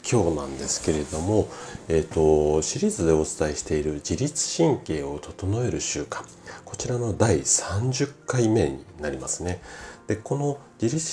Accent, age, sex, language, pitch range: native, 40-59, male, Japanese, 80-120 Hz